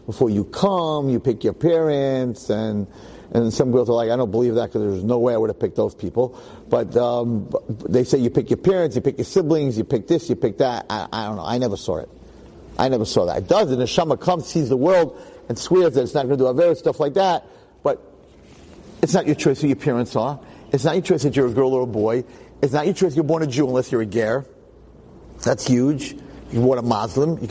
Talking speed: 255 wpm